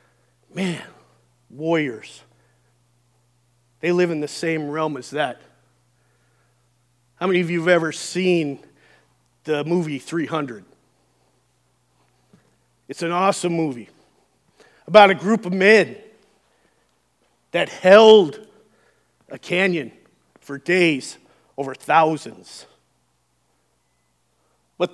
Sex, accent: male, American